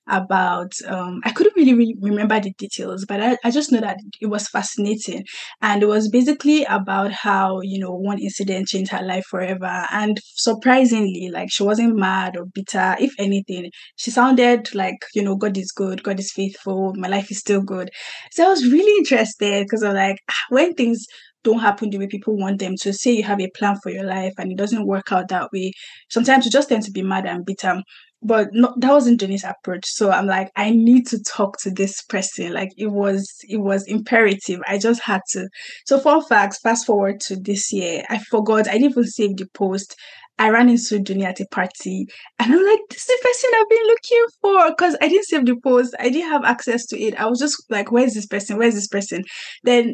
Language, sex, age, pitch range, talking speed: English, female, 10-29, 195-240 Hz, 220 wpm